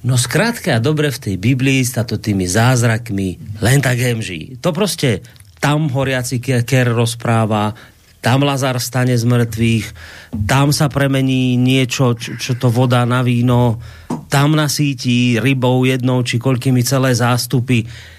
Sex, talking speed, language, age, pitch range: male, 140 wpm, Slovak, 30-49, 115-145 Hz